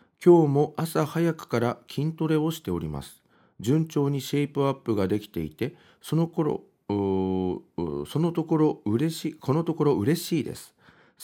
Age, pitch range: 40-59, 100-150 Hz